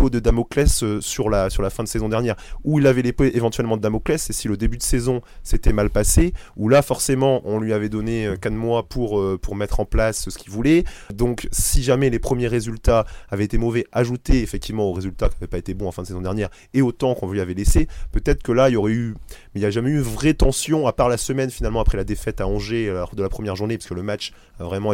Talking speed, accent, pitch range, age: 260 wpm, French, 95-120 Hz, 20-39